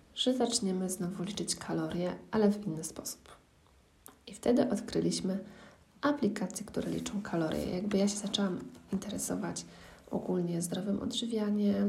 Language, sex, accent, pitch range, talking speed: Polish, female, native, 190-220 Hz, 120 wpm